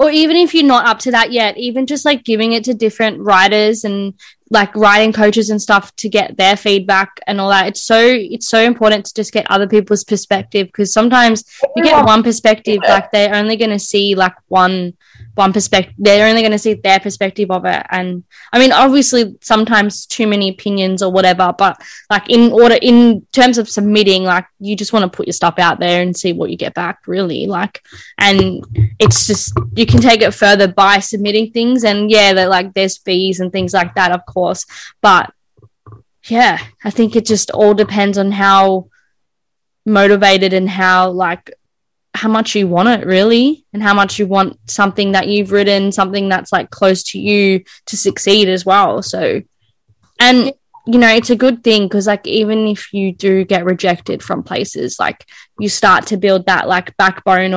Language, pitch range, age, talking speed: English, 190-220 Hz, 10-29, 200 wpm